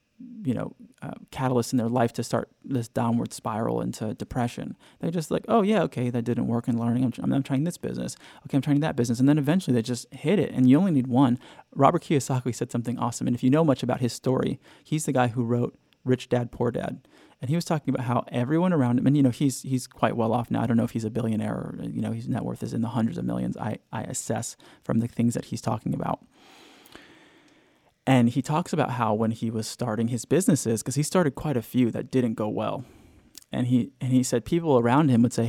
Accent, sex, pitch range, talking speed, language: American, male, 120-145 Hz, 250 wpm, English